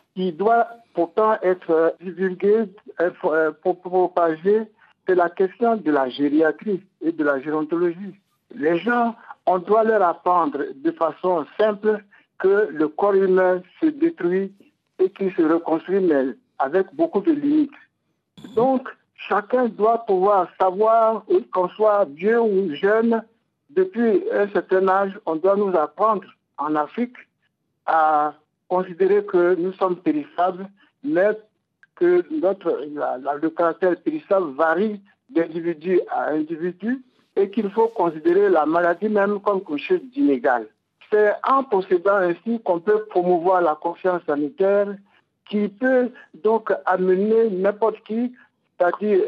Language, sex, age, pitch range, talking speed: French, male, 60-79, 175-225 Hz, 130 wpm